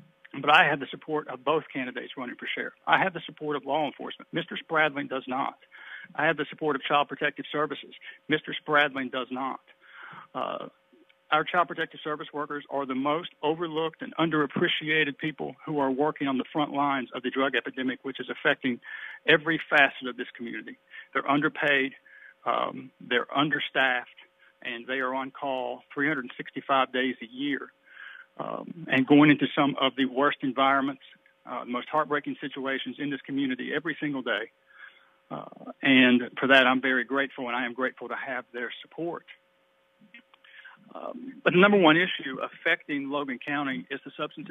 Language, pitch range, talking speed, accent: English, 135-155 Hz, 170 wpm, American